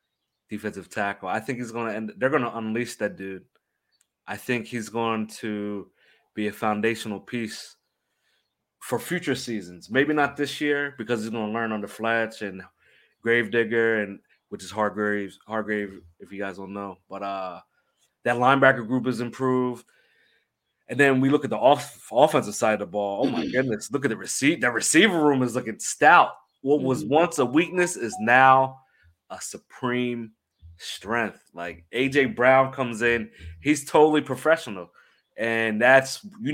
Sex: male